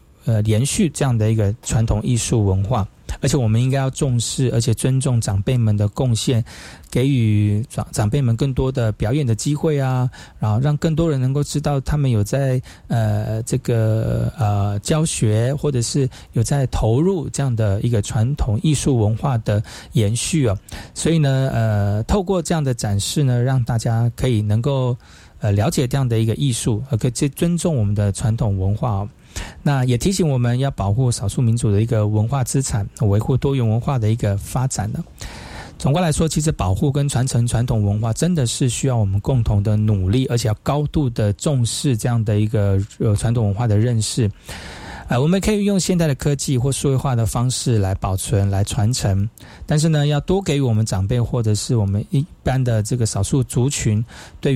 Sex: male